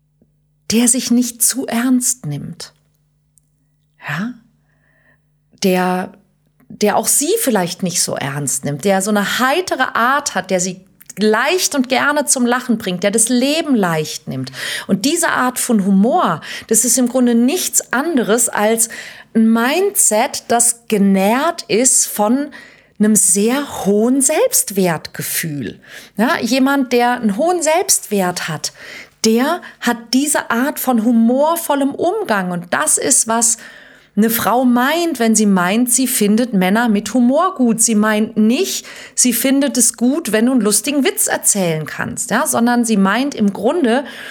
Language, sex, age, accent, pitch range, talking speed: German, female, 40-59, German, 195-270 Hz, 140 wpm